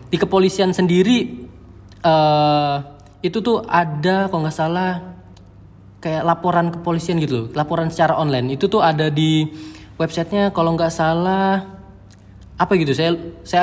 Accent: native